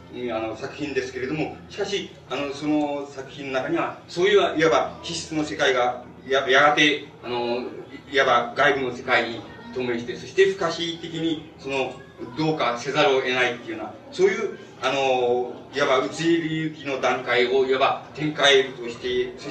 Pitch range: 125-165 Hz